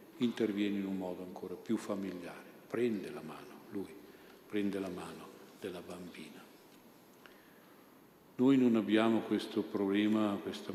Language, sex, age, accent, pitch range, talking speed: Italian, male, 50-69, native, 100-105 Hz, 125 wpm